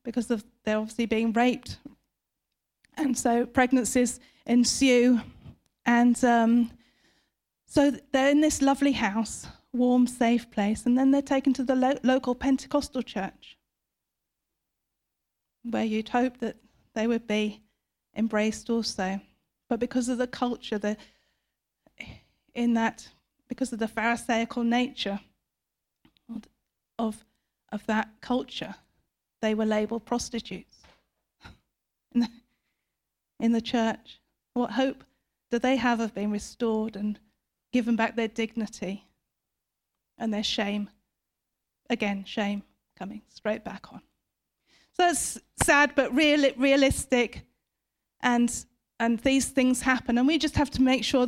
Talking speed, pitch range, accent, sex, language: 125 wpm, 225-265 Hz, British, female, English